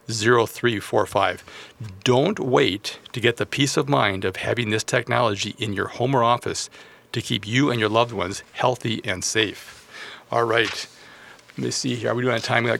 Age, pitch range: 40-59, 110-130 Hz